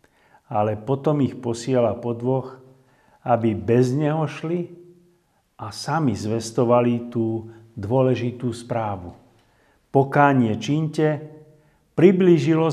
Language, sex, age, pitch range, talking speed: Slovak, male, 50-69, 120-155 Hz, 80 wpm